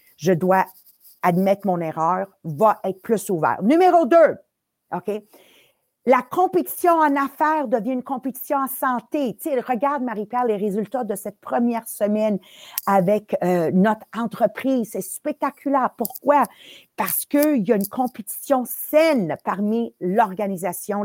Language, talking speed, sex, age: English, 130 wpm, female, 50-69